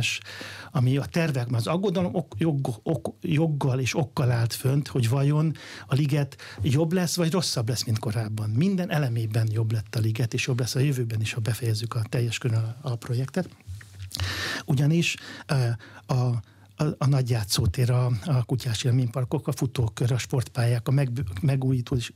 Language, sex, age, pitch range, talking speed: Hungarian, male, 60-79, 115-145 Hz, 165 wpm